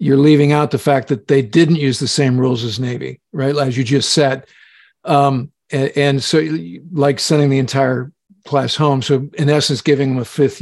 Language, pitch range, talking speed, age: English, 140-170 Hz, 210 wpm, 50-69